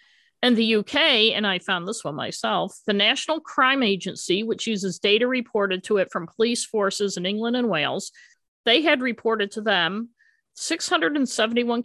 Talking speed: 160 wpm